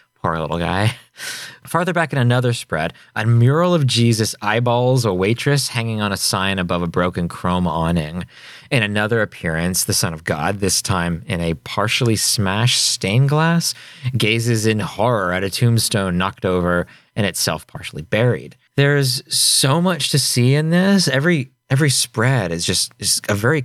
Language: English